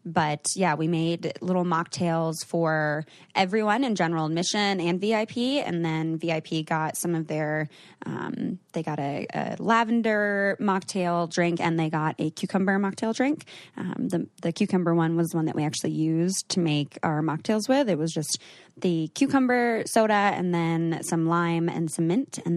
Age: 20-39